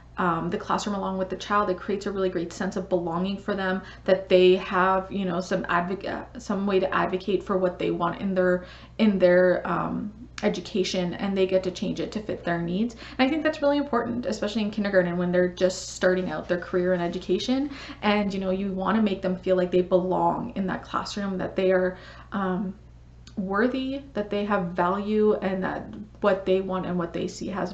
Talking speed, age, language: 215 wpm, 20-39, English